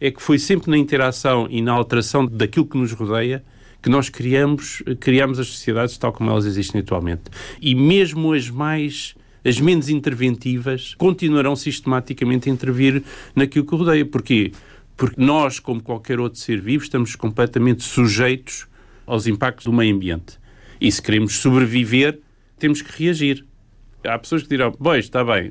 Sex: male